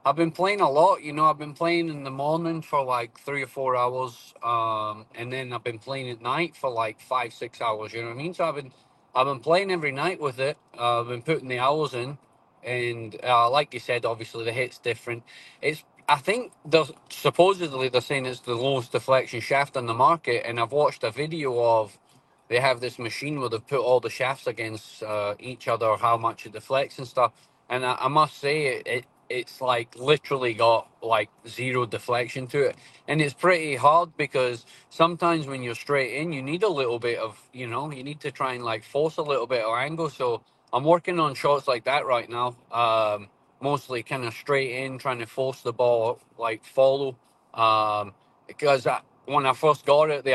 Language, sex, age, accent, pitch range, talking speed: English, male, 30-49, British, 120-145 Hz, 215 wpm